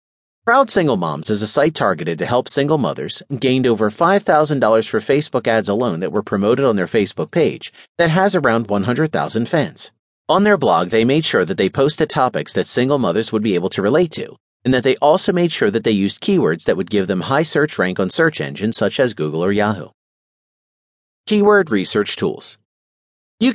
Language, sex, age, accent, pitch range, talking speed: English, male, 40-59, American, 110-180 Hz, 200 wpm